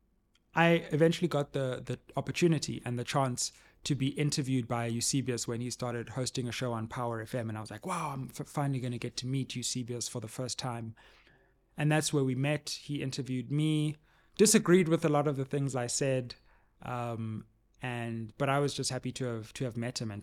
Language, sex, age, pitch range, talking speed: English, male, 20-39, 115-135 Hz, 210 wpm